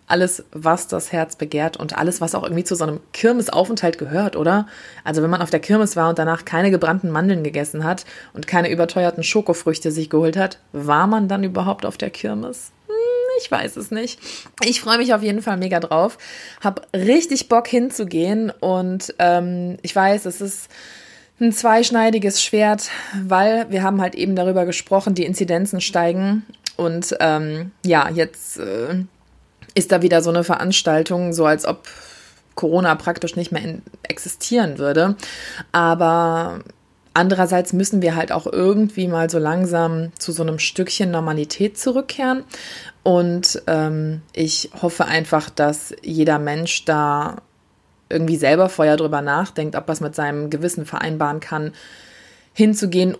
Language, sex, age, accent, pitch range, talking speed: German, female, 20-39, German, 155-195 Hz, 155 wpm